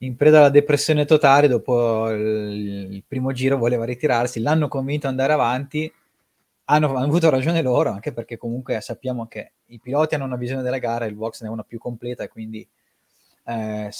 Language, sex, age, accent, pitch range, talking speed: Italian, male, 20-39, native, 115-140 Hz, 185 wpm